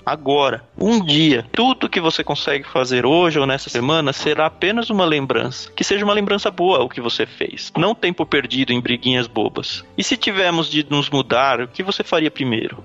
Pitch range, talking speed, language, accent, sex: 145-195 Hz, 200 wpm, Portuguese, Brazilian, male